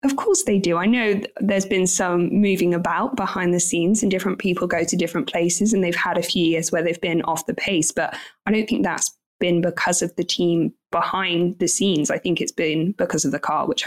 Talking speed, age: 240 wpm, 10-29